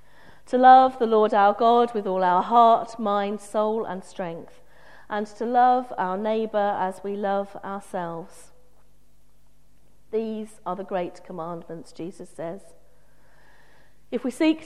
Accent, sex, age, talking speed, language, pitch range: British, female, 50-69, 135 wpm, English, 190-240 Hz